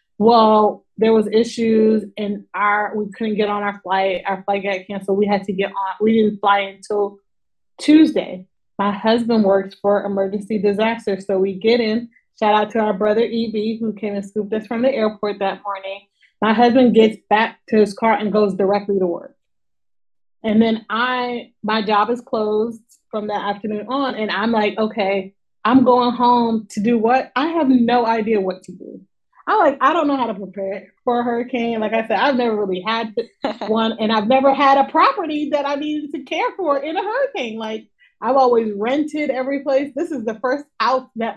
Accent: American